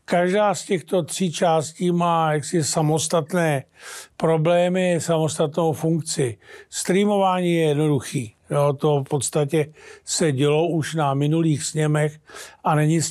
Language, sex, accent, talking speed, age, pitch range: Czech, male, native, 120 wpm, 50-69, 150-175 Hz